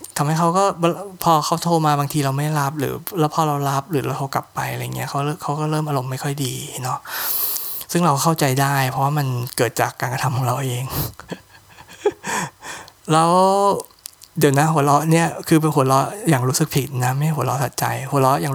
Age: 20-39